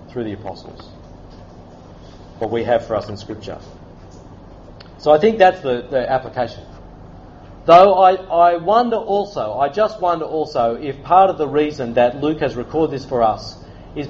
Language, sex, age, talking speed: English, male, 40-59, 165 wpm